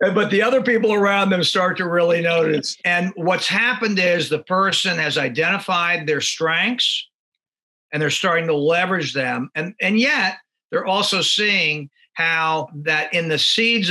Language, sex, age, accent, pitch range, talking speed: English, male, 50-69, American, 155-200 Hz, 160 wpm